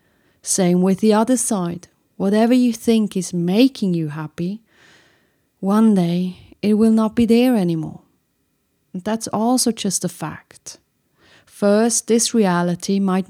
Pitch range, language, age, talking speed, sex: 185-225 Hz, English, 30-49, 130 wpm, female